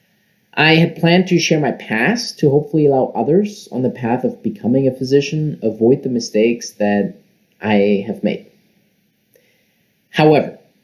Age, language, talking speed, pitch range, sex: 30-49, English, 145 wpm, 120-185 Hz, male